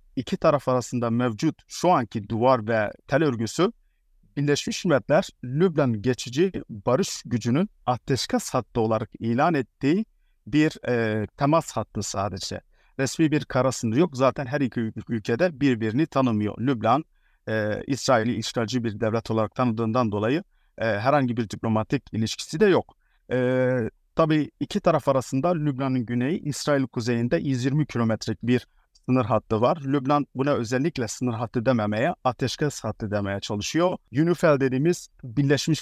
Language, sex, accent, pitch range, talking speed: Turkish, male, native, 110-145 Hz, 135 wpm